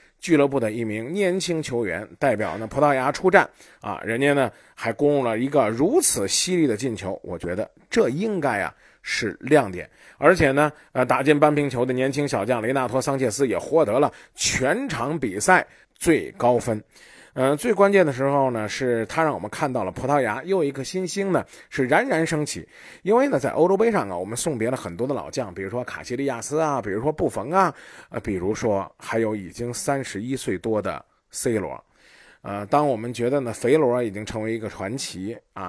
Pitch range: 115-155 Hz